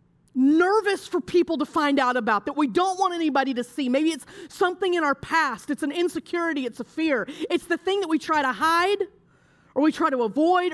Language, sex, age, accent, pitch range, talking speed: English, female, 30-49, American, 250-330 Hz, 220 wpm